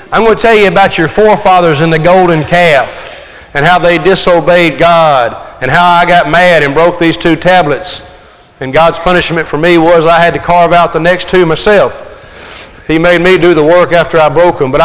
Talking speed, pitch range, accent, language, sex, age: 210 wpm, 155-180 Hz, American, English, male, 40-59